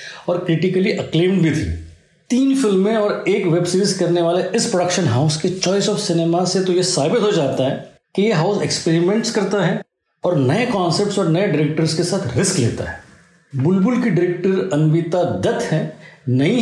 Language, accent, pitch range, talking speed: Hindi, native, 165-220 Hz, 45 wpm